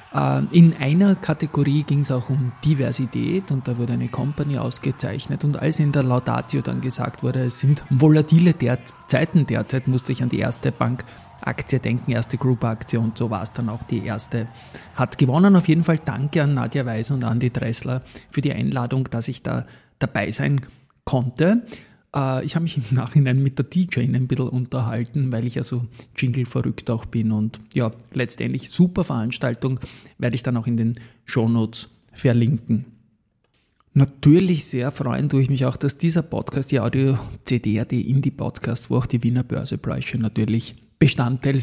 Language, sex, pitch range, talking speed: German, male, 120-145 Hz, 175 wpm